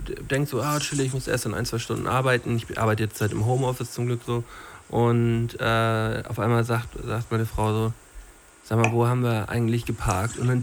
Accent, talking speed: German, 215 wpm